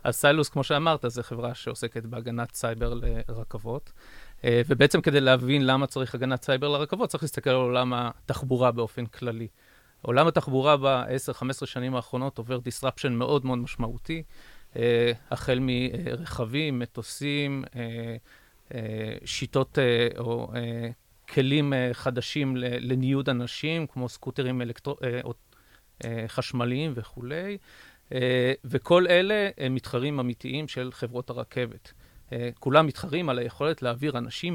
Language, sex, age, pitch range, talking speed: Hebrew, male, 30-49, 120-135 Hz, 115 wpm